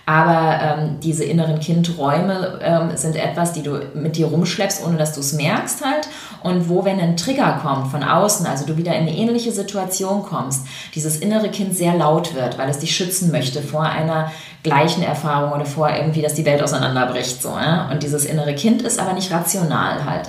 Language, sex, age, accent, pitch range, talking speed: German, female, 30-49, German, 155-200 Hz, 200 wpm